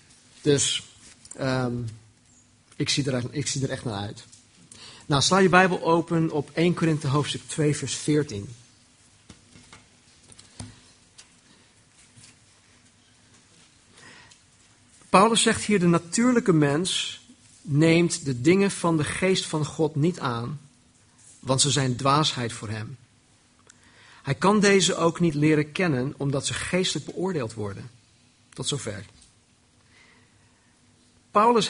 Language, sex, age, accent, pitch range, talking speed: Dutch, male, 50-69, Dutch, 120-170 Hz, 110 wpm